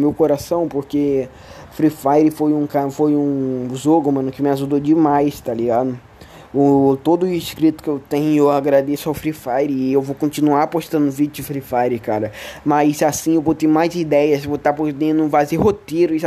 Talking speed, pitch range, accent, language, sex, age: 190 wpm, 135-170 Hz, Brazilian, Portuguese, male, 20-39